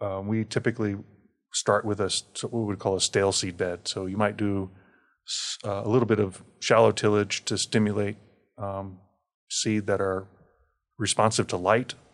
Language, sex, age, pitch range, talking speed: English, male, 30-49, 100-110 Hz, 160 wpm